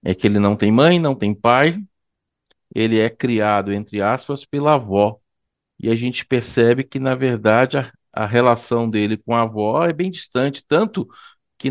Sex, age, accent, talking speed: male, 50-69, Brazilian, 180 wpm